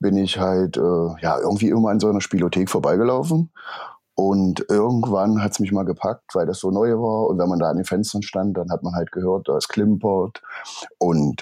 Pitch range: 90-105 Hz